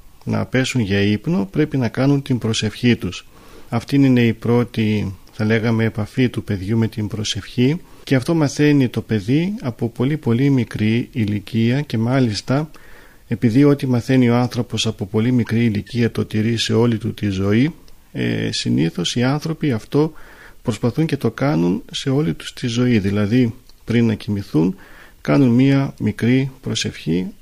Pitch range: 110-135 Hz